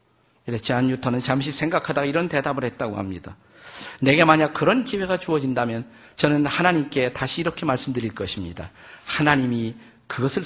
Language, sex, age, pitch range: Korean, male, 50-69, 130-185 Hz